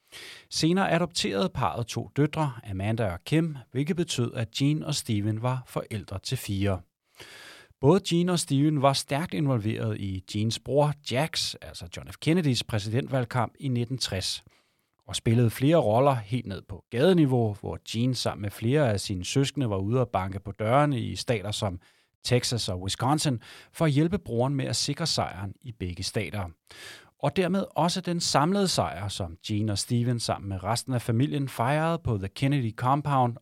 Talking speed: 170 wpm